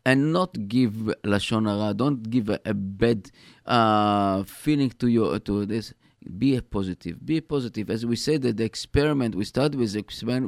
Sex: male